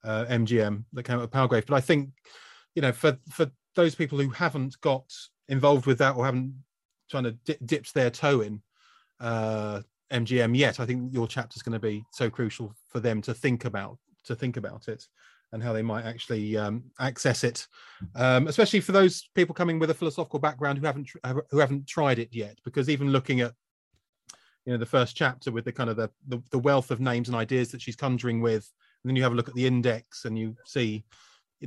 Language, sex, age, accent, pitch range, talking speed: English, male, 30-49, British, 115-145 Hz, 220 wpm